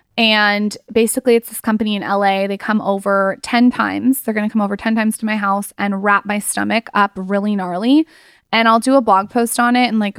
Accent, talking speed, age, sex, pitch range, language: American, 230 wpm, 20-39, female, 195-230 Hz, English